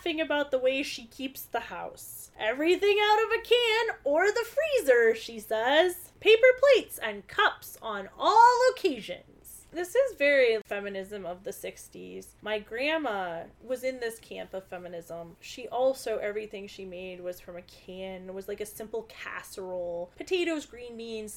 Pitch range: 185-275 Hz